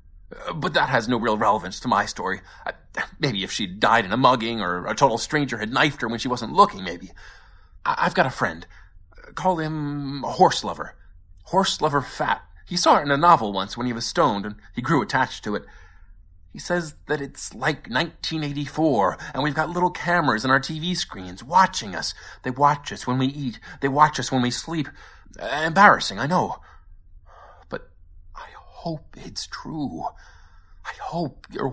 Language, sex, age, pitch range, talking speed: English, male, 30-49, 95-145 Hz, 185 wpm